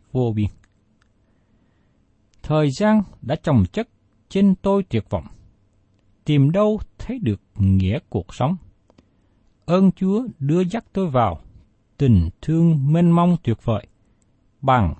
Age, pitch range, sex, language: 60-79, 105-160 Hz, male, Vietnamese